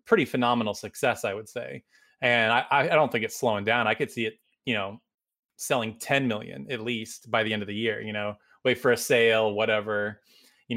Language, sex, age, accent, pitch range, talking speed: English, male, 20-39, American, 110-160 Hz, 215 wpm